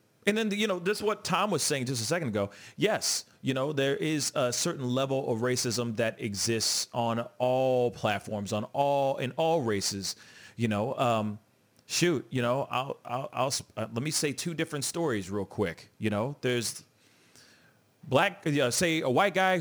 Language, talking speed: English, 195 wpm